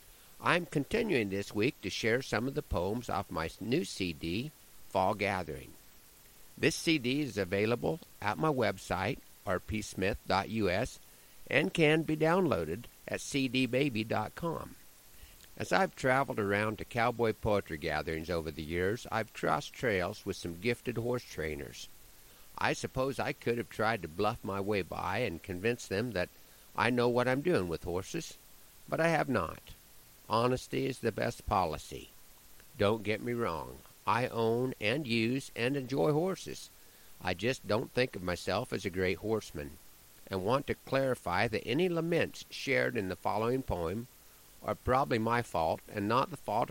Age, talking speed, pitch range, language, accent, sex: 50-69, 155 wpm, 95-130 Hz, English, American, male